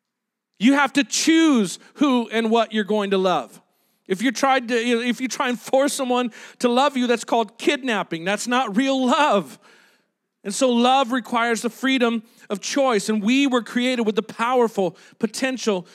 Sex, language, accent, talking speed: male, English, American, 165 wpm